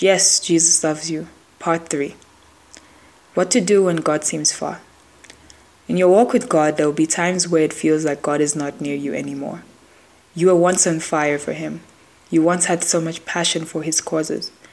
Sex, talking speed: female, 190 wpm